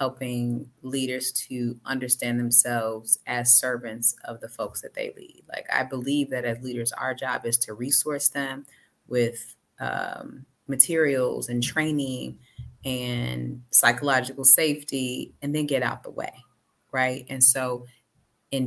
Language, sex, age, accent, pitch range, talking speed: English, female, 30-49, American, 125-145 Hz, 140 wpm